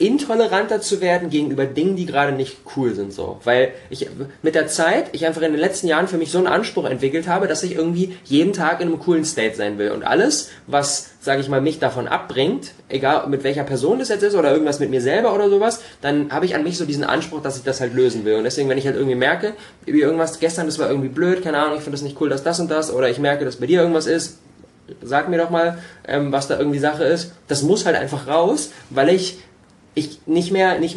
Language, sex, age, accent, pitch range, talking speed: German, male, 20-39, German, 135-165 Hz, 250 wpm